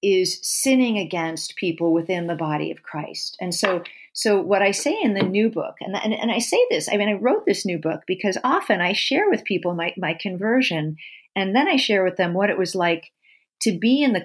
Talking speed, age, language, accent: 230 wpm, 50-69, English, American